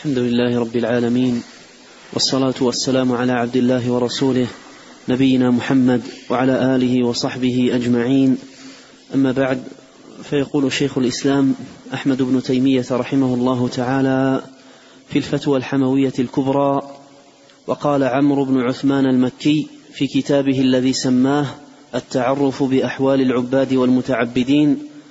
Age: 30-49